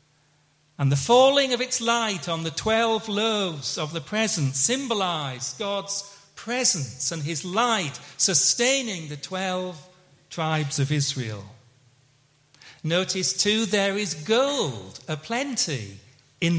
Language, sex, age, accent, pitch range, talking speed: English, male, 40-59, British, 145-220 Hz, 115 wpm